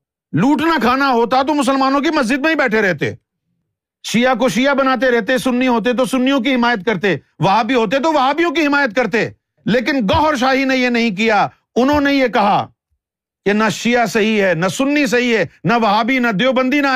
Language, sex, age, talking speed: Urdu, male, 50-69, 195 wpm